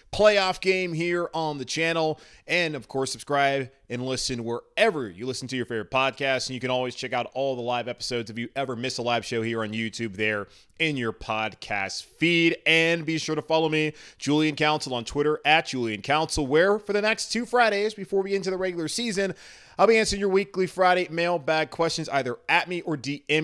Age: 30-49